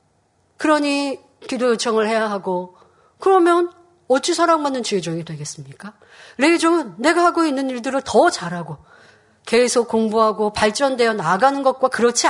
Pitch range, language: 200-285 Hz, Korean